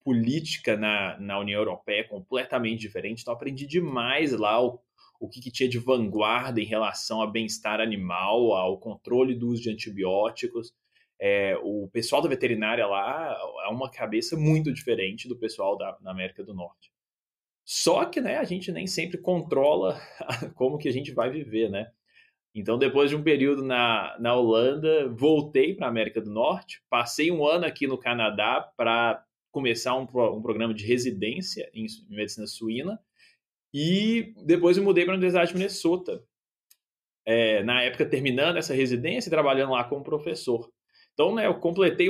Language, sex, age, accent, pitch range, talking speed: Portuguese, male, 20-39, Brazilian, 110-165 Hz, 165 wpm